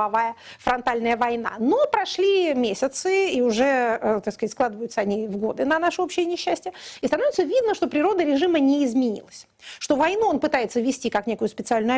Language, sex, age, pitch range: Russian, female, 30-49, 235-315 Hz